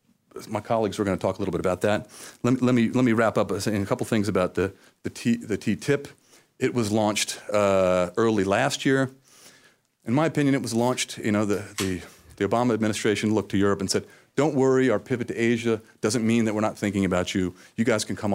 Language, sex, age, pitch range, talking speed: English, male, 40-59, 95-120 Hz, 235 wpm